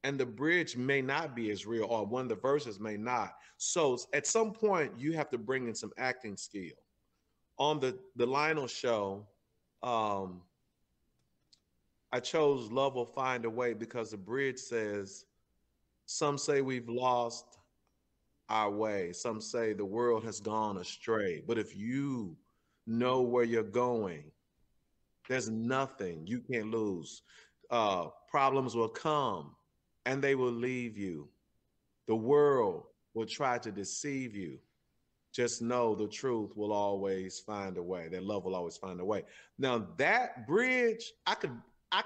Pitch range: 110-140 Hz